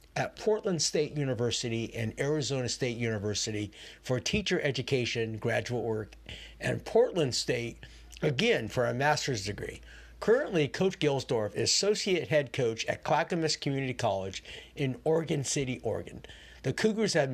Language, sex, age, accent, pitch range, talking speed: English, male, 50-69, American, 115-160 Hz, 135 wpm